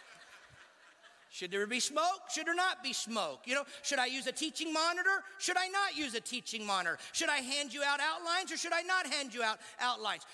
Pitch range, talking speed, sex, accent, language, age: 255-365 Hz, 220 wpm, male, American, English, 40-59